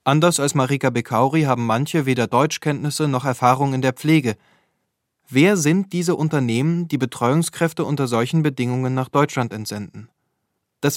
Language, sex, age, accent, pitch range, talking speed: German, male, 20-39, German, 125-160 Hz, 140 wpm